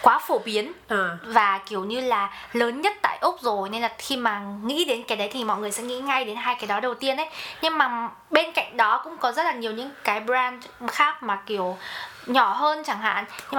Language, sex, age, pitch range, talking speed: Vietnamese, female, 20-39, 210-265 Hz, 240 wpm